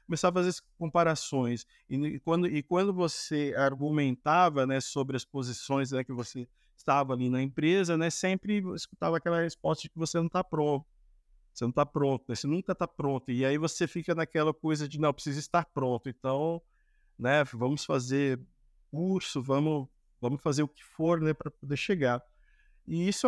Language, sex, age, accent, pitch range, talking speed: Portuguese, male, 50-69, Brazilian, 130-175 Hz, 180 wpm